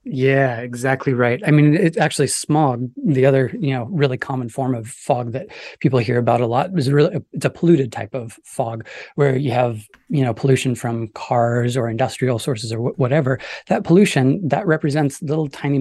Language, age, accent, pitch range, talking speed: English, 30-49, American, 130-155 Hz, 190 wpm